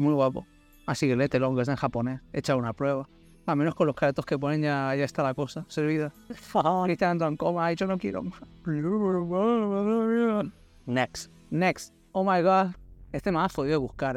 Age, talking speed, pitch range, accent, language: 30-49, 180 wpm, 135-160 Hz, Spanish, Spanish